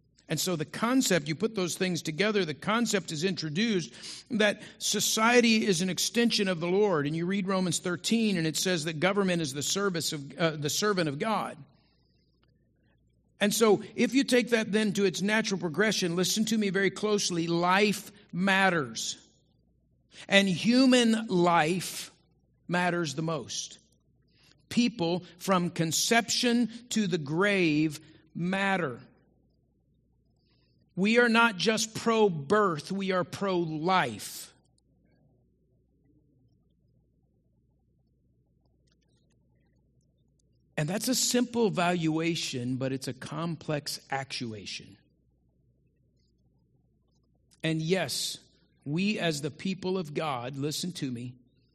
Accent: American